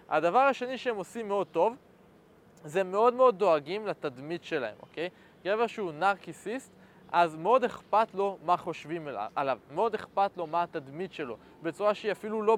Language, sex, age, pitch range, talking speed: Hebrew, male, 20-39, 165-220 Hz, 160 wpm